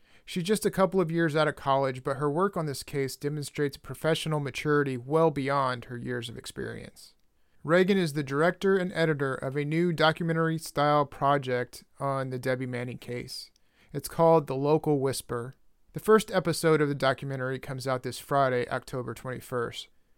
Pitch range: 125-160 Hz